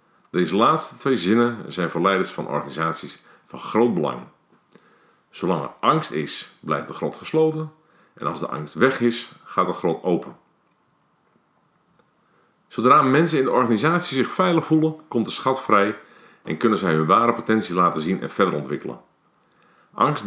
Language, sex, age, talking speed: Dutch, male, 50-69, 160 wpm